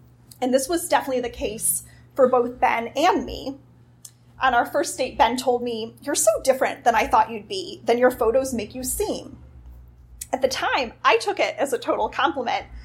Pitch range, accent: 225-310 Hz, American